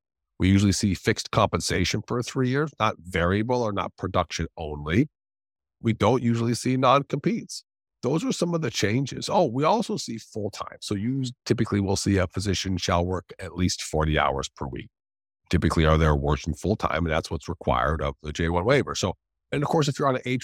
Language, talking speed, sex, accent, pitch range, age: English, 205 wpm, male, American, 85-120 Hz, 50-69